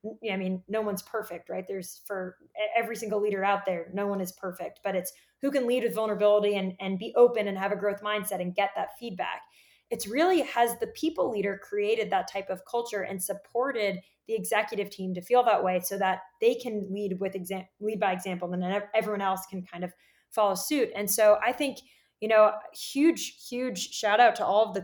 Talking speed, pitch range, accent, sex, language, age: 215 wpm, 190-225 Hz, American, female, English, 20-39